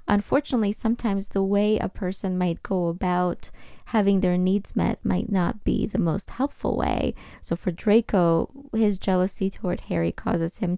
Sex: female